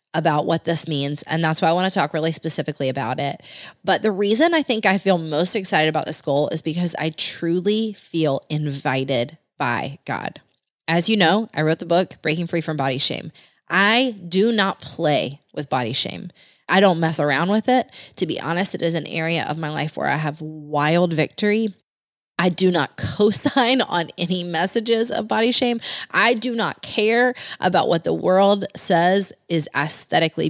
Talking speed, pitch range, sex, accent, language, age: 190 wpm, 160-210 Hz, female, American, English, 20-39